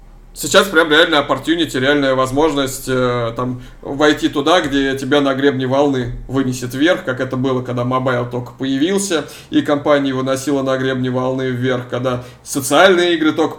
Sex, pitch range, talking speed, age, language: male, 130-150 Hz, 150 wpm, 20-39, Russian